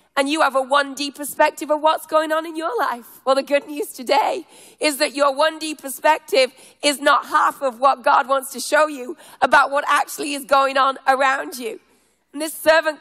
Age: 30-49